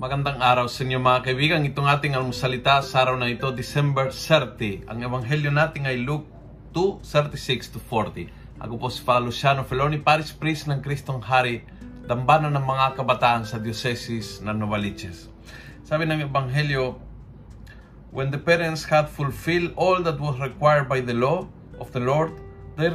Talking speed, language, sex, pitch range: 155 wpm, Filipino, male, 120-150 Hz